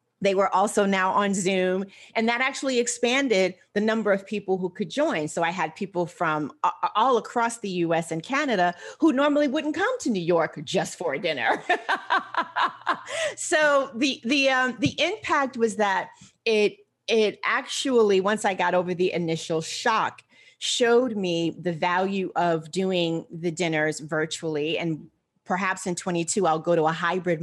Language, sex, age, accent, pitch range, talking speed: English, female, 30-49, American, 170-220 Hz, 165 wpm